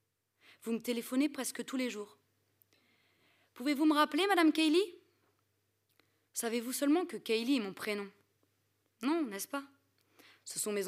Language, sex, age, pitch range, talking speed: French, female, 20-39, 190-255 Hz, 140 wpm